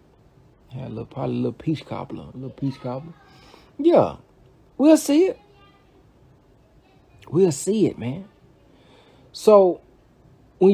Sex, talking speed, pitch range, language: male, 105 wpm, 130-205 Hz, English